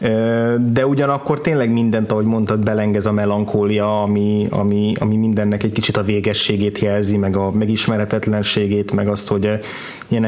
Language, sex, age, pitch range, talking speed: Hungarian, male, 20-39, 105-120 Hz, 145 wpm